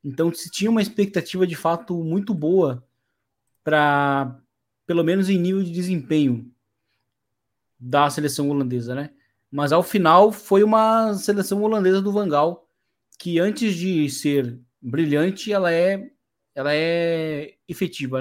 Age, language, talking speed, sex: 20-39, Portuguese, 130 wpm, male